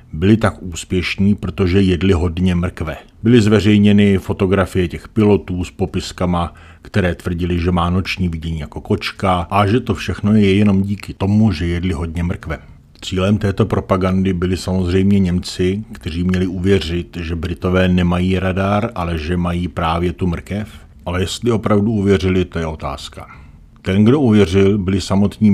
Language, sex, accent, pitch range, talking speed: Czech, male, native, 85-95 Hz, 155 wpm